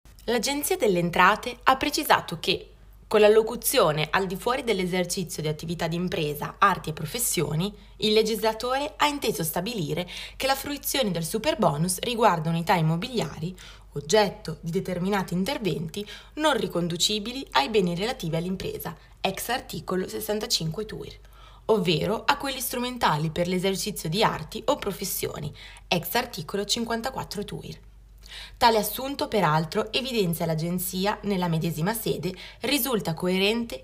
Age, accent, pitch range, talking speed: 20-39, native, 170-220 Hz, 125 wpm